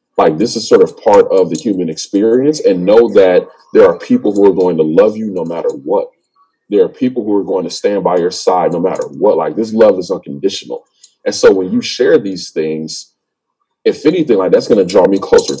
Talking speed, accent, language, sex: 230 wpm, American, English, male